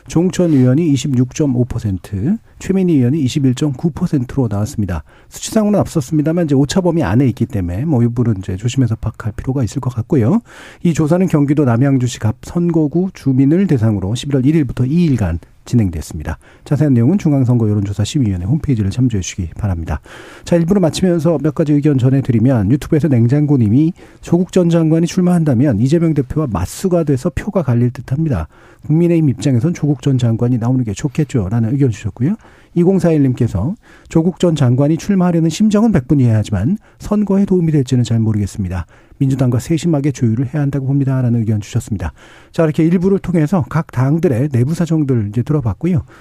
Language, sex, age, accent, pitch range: Korean, male, 40-59, native, 115-165 Hz